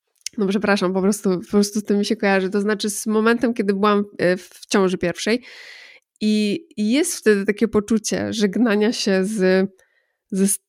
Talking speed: 155 wpm